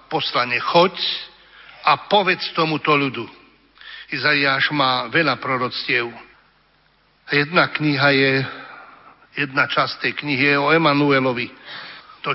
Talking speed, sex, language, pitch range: 95 wpm, male, Slovak, 135-160 Hz